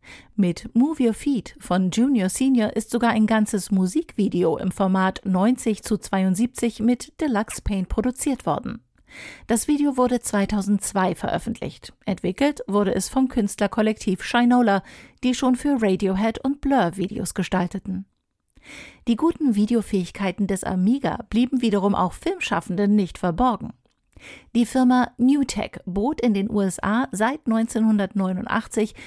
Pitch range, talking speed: 195-245 Hz, 125 wpm